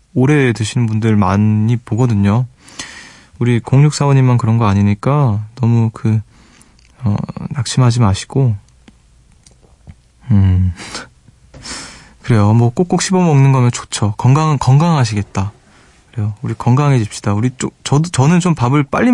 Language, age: Korean, 20-39